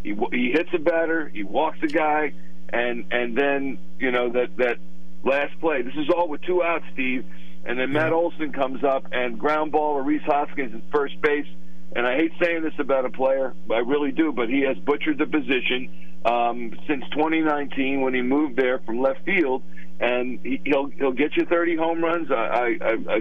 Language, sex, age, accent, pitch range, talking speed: English, male, 50-69, American, 125-160 Hz, 195 wpm